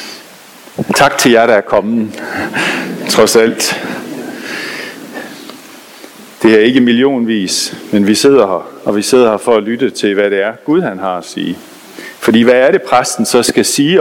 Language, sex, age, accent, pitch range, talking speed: Danish, male, 50-69, native, 110-170 Hz, 170 wpm